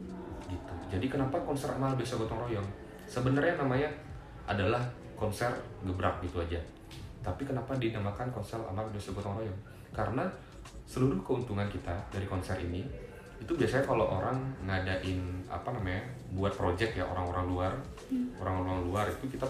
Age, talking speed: 20-39, 140 wpm